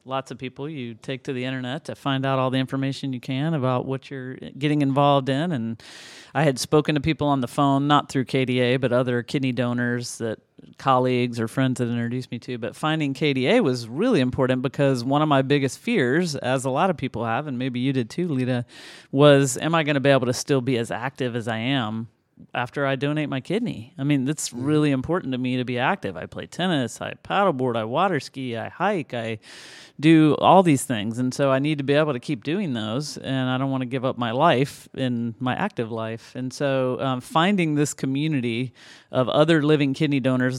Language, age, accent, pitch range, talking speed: English, 40-59, American, 125-150 Hz, 220 wpm